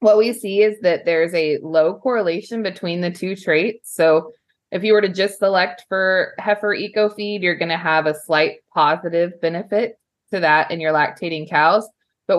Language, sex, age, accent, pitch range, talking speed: English, female, 20-39, American, 155-200 Hz, 190 wpm